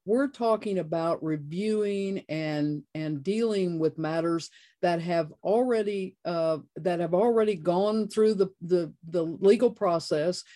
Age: 50-69